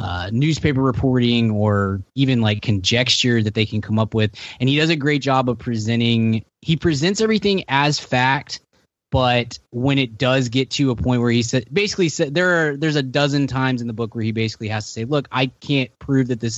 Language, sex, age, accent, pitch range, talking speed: English, male, 20-39, American, 105-130 Hz, 215 wpm